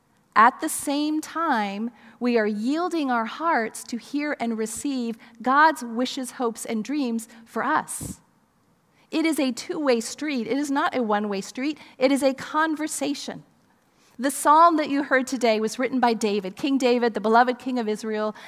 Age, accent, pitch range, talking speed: 40-59, American, 230-275 Hz, 170 wpm